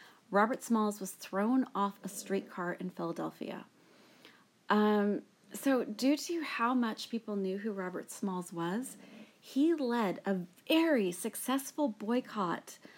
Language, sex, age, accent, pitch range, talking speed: English, female, 30-49, American, 180-225 Hz, 125 wpm